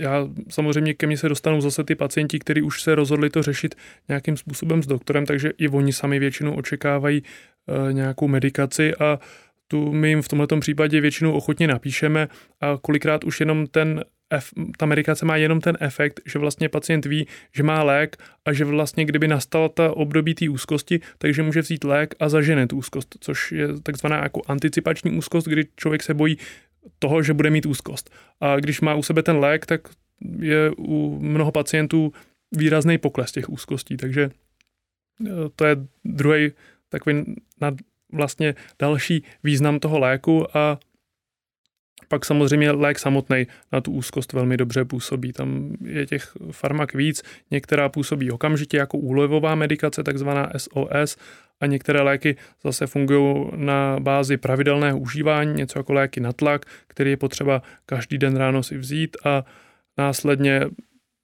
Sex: male